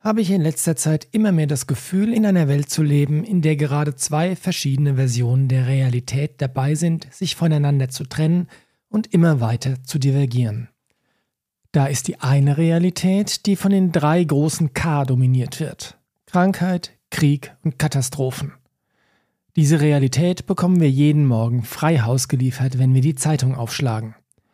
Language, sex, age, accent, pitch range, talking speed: German, male, 40-59, German, 135-170 Hz, 155 wpm